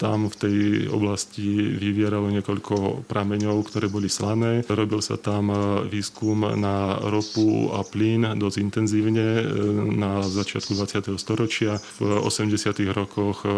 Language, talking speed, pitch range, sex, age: Slovak, 120 wpm, 100-110 Hz, male, 30-49